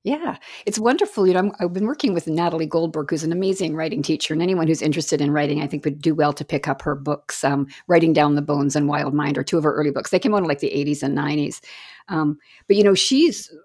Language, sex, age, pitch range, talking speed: English, female, 50-69, 160-240 Hz, 270 wpm